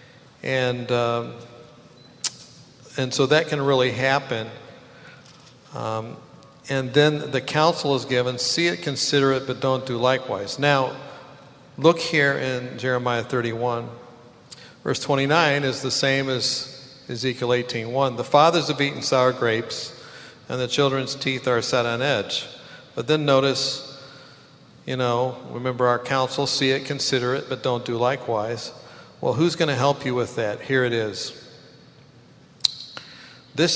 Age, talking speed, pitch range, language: 50-69, 140 wpm, 120-135 Hz, English